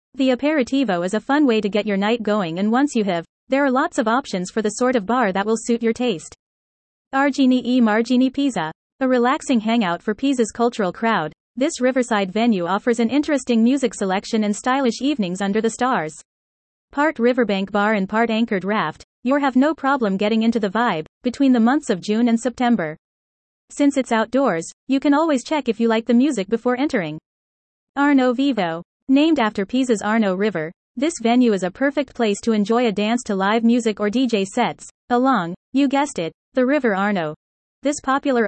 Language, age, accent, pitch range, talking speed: English, 30-49, American, 205-260 Hz, 190 wpm